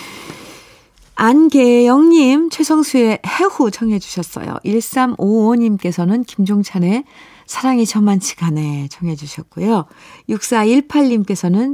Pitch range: 180-260 Hz